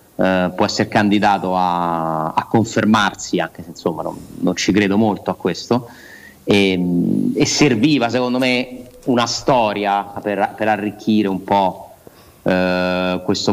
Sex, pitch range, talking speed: male, 95-110 Hz, 135 wpm